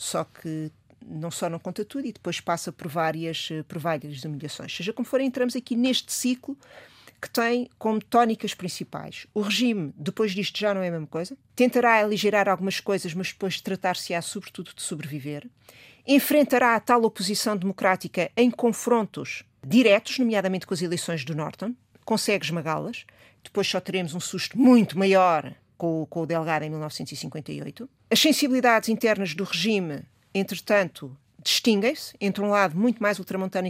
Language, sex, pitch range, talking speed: Portuguese, female, 175-235 Hz, 155 wpm